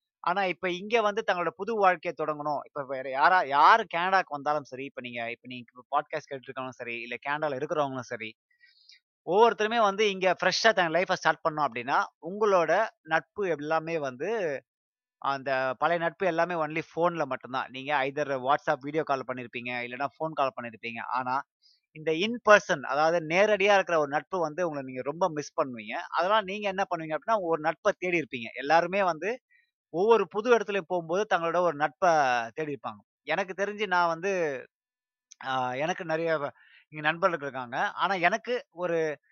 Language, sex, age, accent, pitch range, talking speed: Tamil, male, 20-39, native, 140-185 Hz, 155 wpm